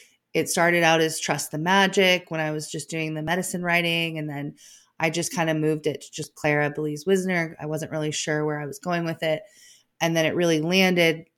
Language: English